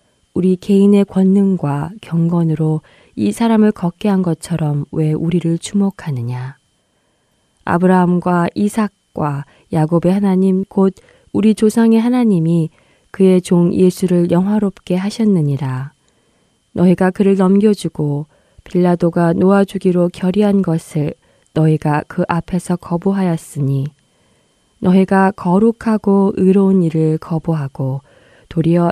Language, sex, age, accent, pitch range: Korean, female, 20-39, native, 160-200 Hz